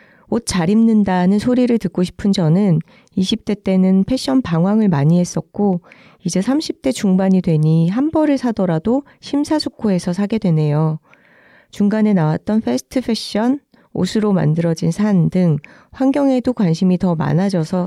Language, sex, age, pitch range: Korean, female, 40-59, 170-225 Hz